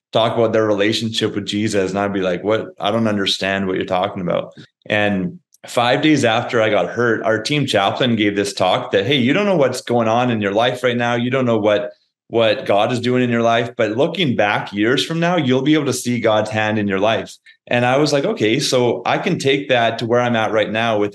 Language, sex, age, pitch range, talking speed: English, male, 30-49, 105-125 Hz, 250 wpm